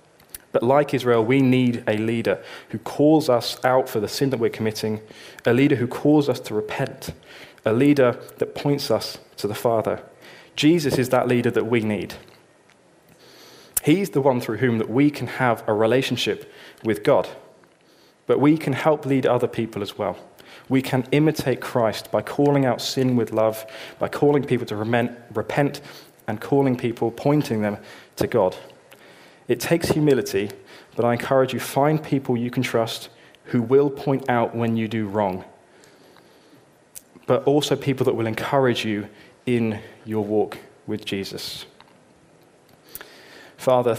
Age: 20-39